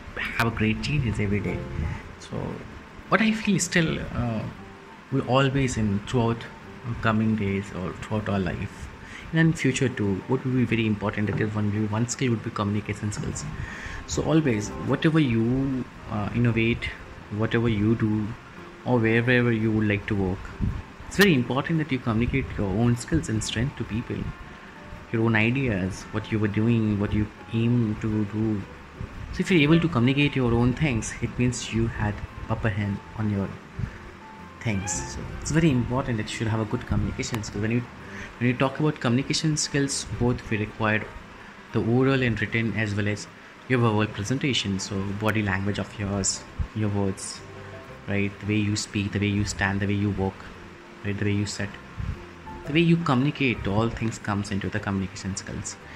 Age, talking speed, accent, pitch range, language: 30-49, 180 wpm, Indian, 100-120 Hz, English